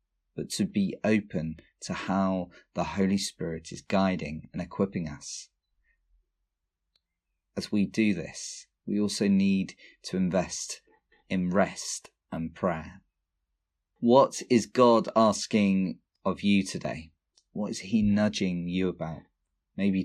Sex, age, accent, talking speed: male, 30-49, British, 125 wpm